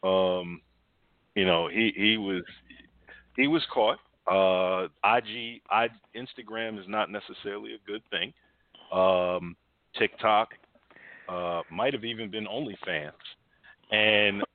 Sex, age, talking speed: male, 40-59, 120 wpm